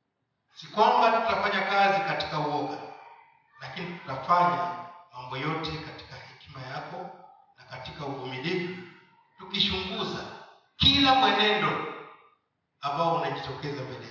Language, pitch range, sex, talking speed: Swahili, 135-185 Hz, male, 90 wpm